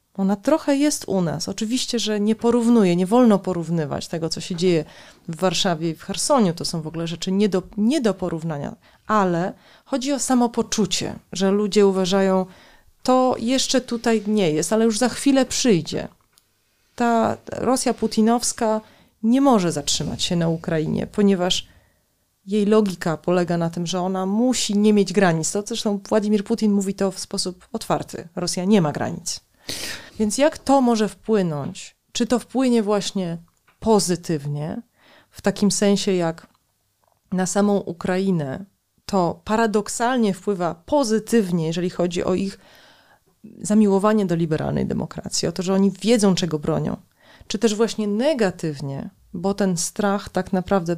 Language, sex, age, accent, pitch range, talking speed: Polish, female, 30-49, native, 175-220 Hz, 150 wpm